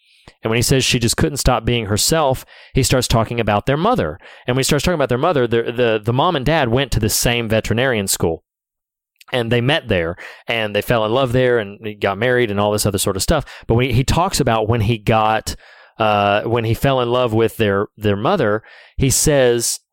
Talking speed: 230 wpm